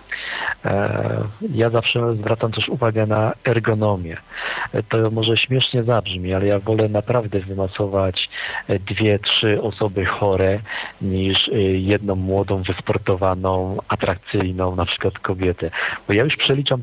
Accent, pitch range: native, 95-115 Hz